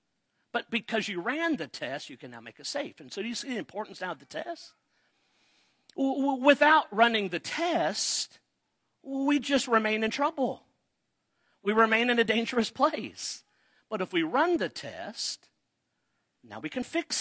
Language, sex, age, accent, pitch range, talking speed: English, male, 50-69, American, 180-235 Hz, 165 wpm